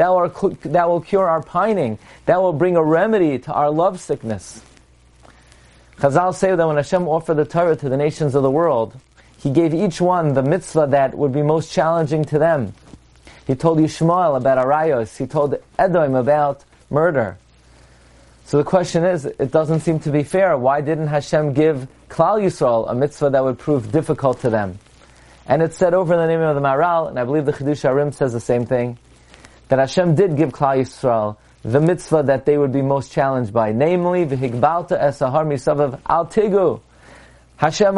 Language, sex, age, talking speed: English, male, 30-49, 180 wpm